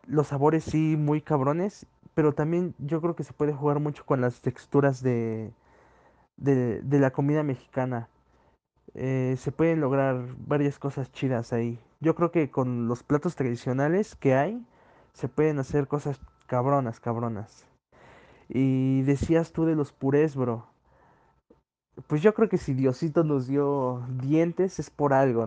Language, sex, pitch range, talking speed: Spanish, male, 130-160 Hz, 155 wpm